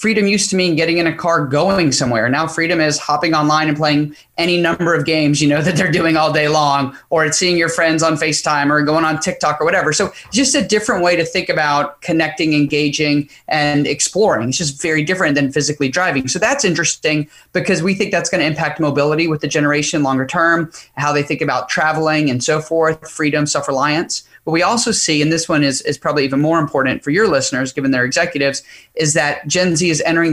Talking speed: 220 wpm